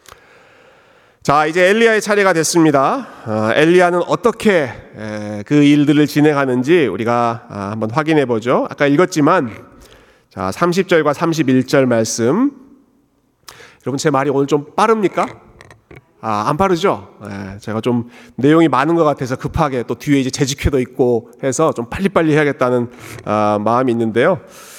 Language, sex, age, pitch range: Korean, male, 40-59, 120-155 Hz